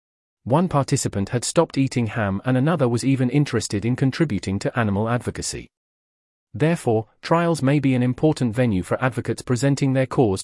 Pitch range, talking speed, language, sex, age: 105-140 Hz, 160 wpm, English, male, 40-59